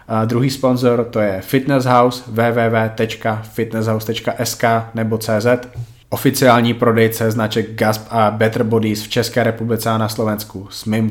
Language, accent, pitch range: Czech, native, 110-120 Hz